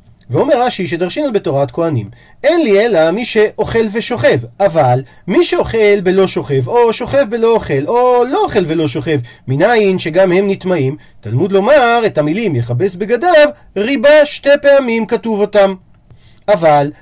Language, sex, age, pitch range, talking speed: Hebrew, male, 40-59, 150-235 Hz, 145 wpm